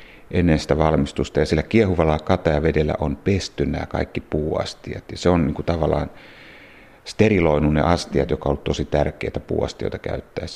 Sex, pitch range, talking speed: male, 75-90 Hz, 150 wpm